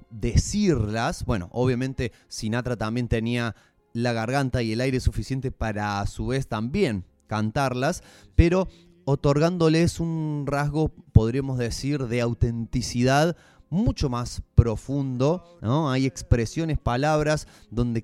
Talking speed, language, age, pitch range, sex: 110 wpm, Spanish, 30-49, 110-145 Hz, male